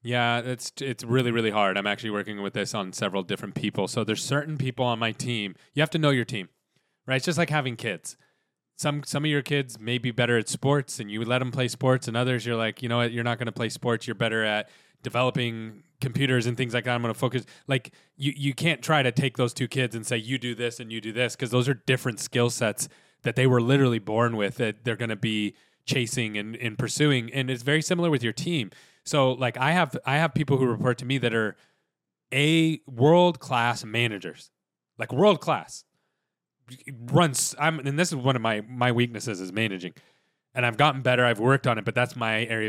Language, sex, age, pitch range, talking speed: English, male, 20-39, 115-140 Hz, 235 wpm